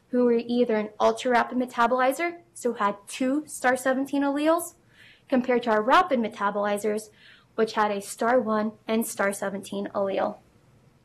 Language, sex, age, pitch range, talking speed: English, female, 20-39, 220-270 Hz, 125 wpm